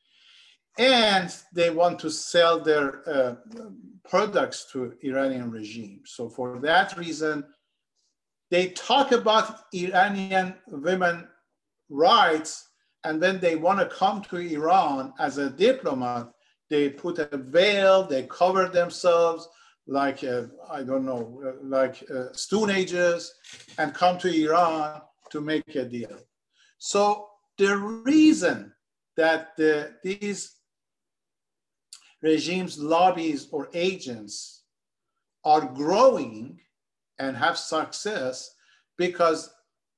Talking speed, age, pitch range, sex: 105 wpm, 50-69, 150-190 Hz, male